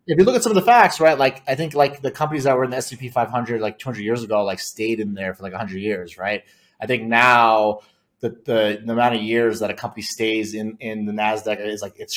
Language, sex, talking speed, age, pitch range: English, male, 265 wpm, 30-49, 115-150 Hz